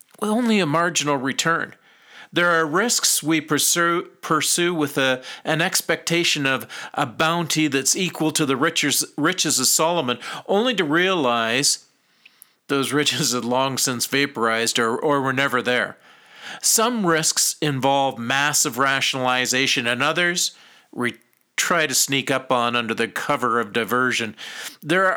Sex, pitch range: male, 130-165 Hz